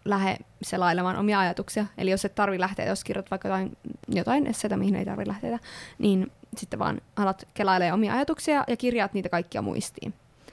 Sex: female